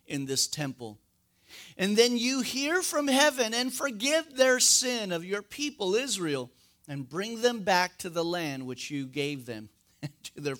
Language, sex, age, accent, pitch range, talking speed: English, male, 50-69, American, 155-235 Hz, 170 wpm